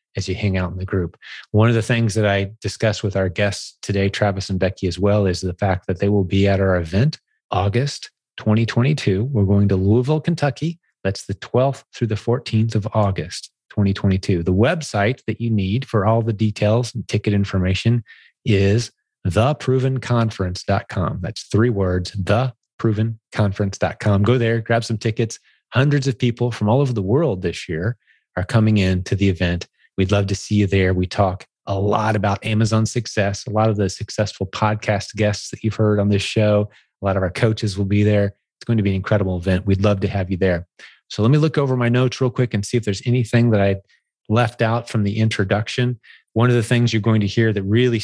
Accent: American